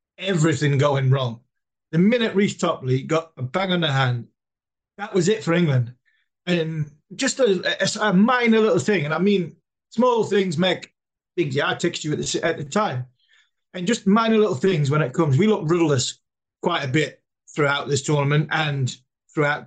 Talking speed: 185 wpm